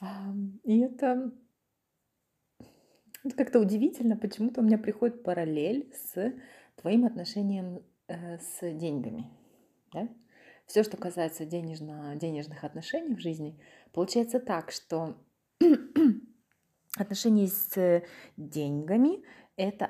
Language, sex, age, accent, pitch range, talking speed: Ukrainian, female, 30-49, native, 175-250 Hz, 95 wpm